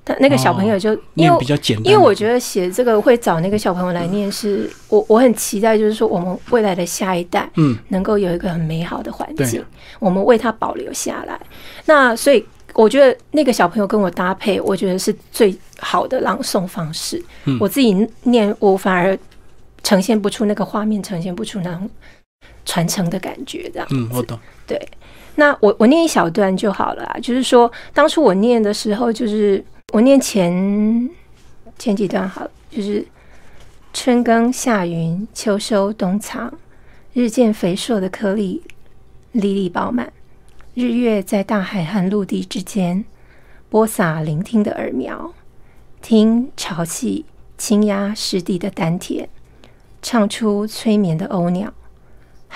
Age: 30-49